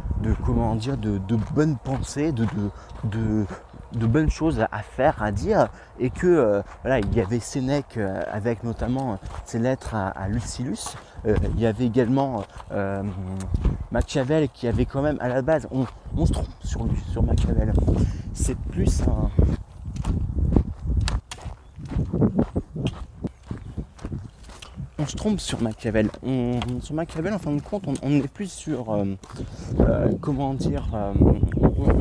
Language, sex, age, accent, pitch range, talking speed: French, male, 30-49, French, 100-145 Hz, 150 wpm